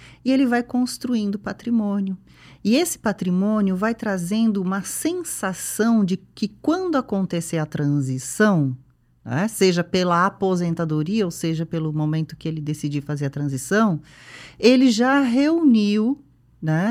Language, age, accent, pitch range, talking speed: Portuguese, 40-59, Brazilian, 150-225 Hz, 130 wpm